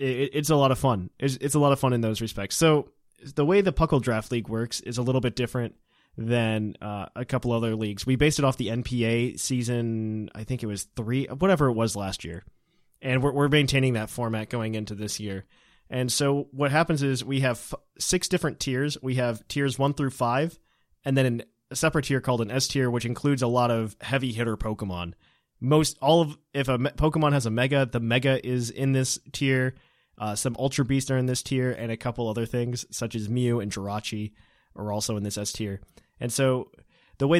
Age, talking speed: 30-49, 220 wpm